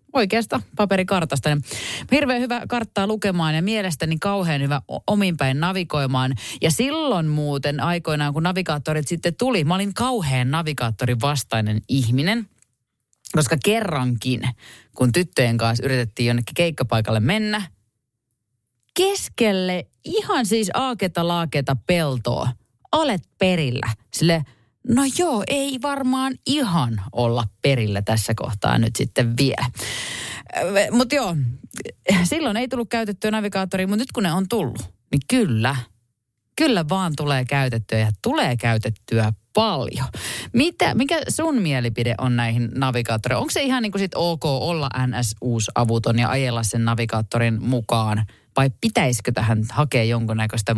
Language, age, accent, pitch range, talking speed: Finnish, 30-49, native, 120-195 Hz, 125 wpm